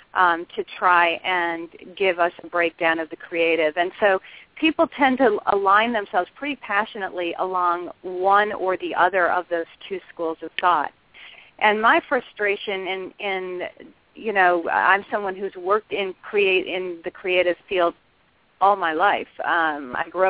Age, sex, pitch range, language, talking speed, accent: 40-59, female, 170-205 Hz, English, 155 wpm, American